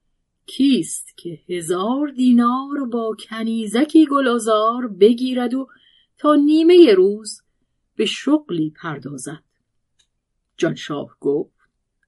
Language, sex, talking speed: Persian, female, 85 wpm